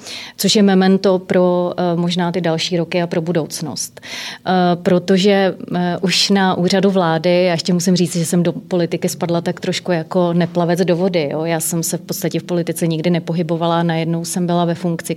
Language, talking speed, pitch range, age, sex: Czech, 180 wpm, 170-185 Hz, 30-49, female